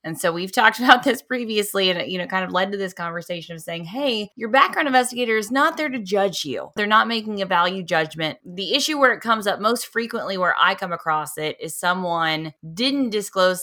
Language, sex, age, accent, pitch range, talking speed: English, female, 20-39, American, 170-220 Hz, 220 wpm